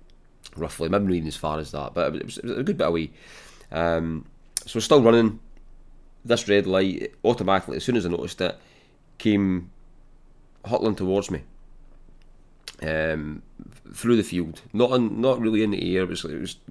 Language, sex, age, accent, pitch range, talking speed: English, male, 30-49, British, 80-100 Hz, 170 wpm